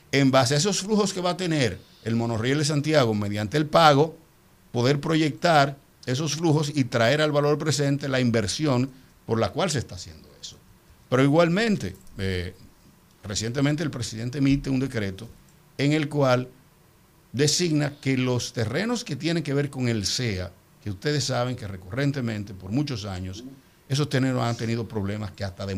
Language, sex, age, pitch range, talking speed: Spanish, male, 50-69, 105-145 Hz, 170 wpm